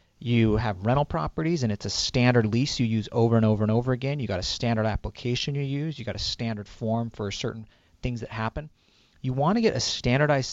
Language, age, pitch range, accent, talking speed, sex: English, 40-59, 110-140 Hz, American, 230 wpm, male